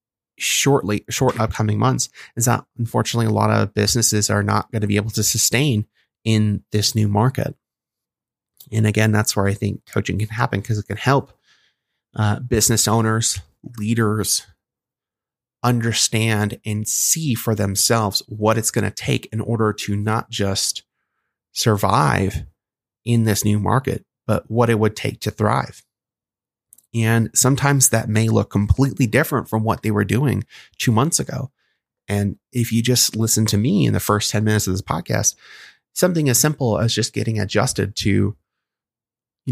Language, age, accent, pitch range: English, 30-49, American, 105-120 Hz